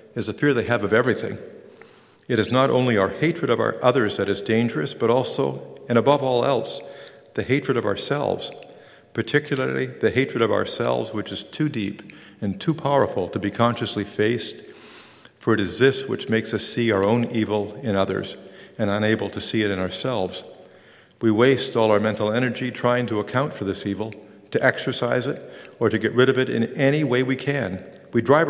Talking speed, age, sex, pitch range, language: 195 wpm, 50-69, male, 105-130 Hz, English